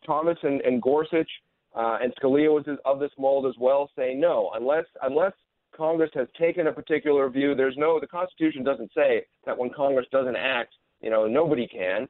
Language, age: English, 40-59